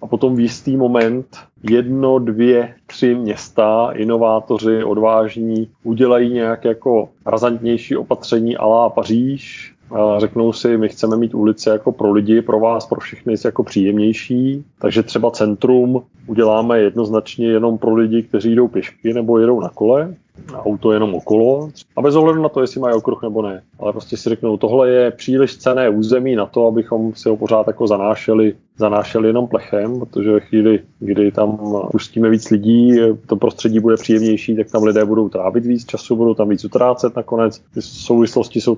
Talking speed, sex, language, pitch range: 165 wpm, male, Czech, 110-125 Hz